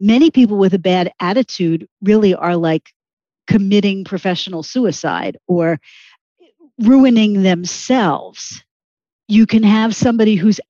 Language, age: English, 50-69